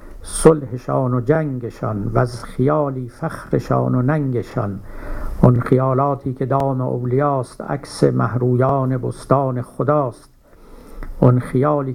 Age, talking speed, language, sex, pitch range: 60-79, 100 wpm, Persian, male, 120-150 Hz